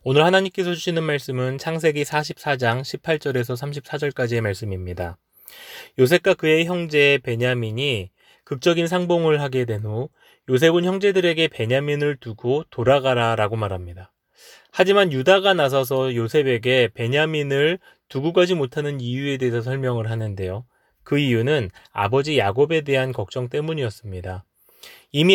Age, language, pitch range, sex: 20-39, Korean, 115-165 Hz, male